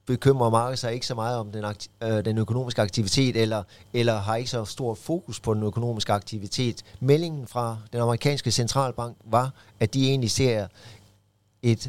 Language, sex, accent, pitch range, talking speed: Danish, male, native, 105-125 Hz, 165 wpm